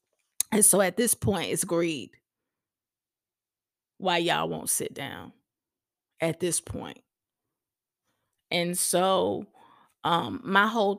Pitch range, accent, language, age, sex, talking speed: 175-205 Hz, American, English, 20-39, female, 110 wpm